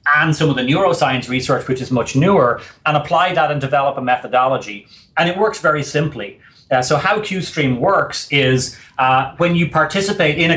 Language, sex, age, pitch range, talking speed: English, male, 30-49, 130-155 Hz, 195 wpm